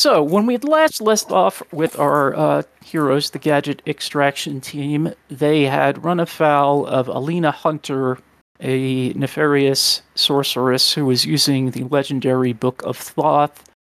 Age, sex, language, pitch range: 40-59, male, English, 125-150 Hz